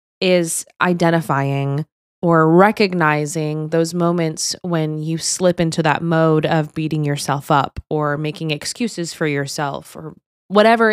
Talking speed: 125 wpm